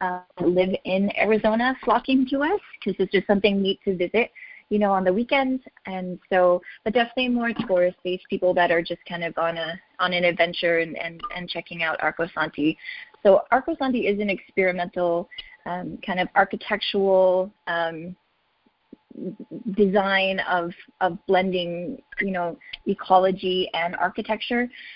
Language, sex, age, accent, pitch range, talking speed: English, female, 20-39, American, 175-205 Hz, 145 wpm